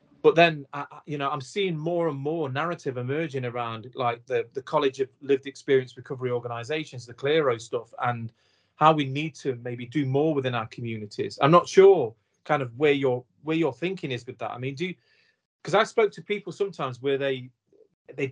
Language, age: English, 30-49